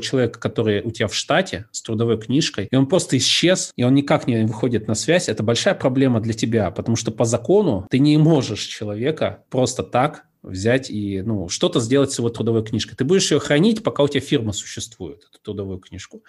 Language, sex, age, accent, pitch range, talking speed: Russian, male, 20-39, native, 105-135 Hz, 205 wpm